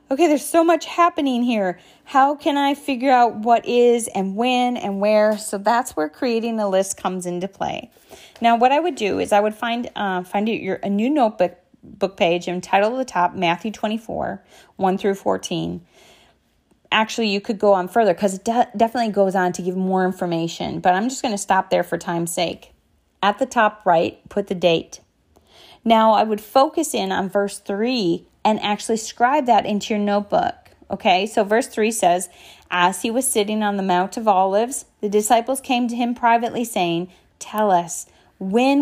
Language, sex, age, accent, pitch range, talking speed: English, female, 30-49, American, 185-235 Hz, 195 wpm